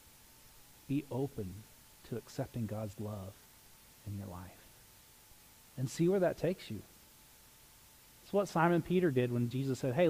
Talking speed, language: 145 wpm, English